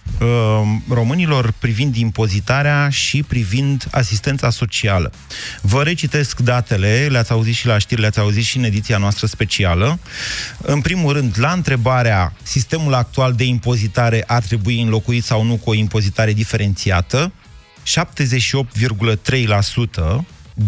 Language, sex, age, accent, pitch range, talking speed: Romanian, male, 30-49, native, 110-140 Hz, 120 wpm